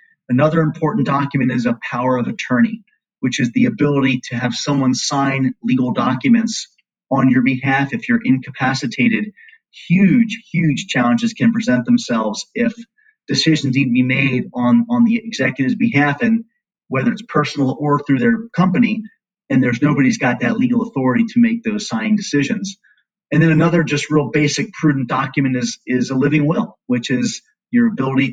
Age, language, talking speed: 30-49, English, 165 wpm